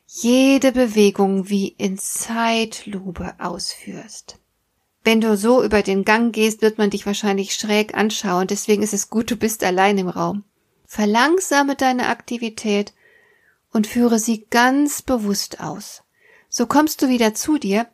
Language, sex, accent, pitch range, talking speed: German, female, German, 205-265 Hz, 145 wpm